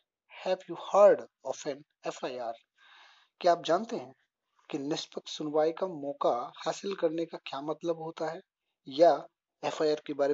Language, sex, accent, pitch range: Hindi, male, native, 150-185 Hz